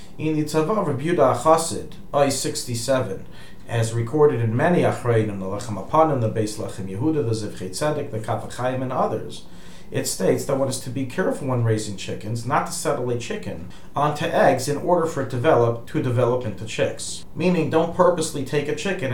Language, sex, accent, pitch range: English, male, American, 115-150 Hz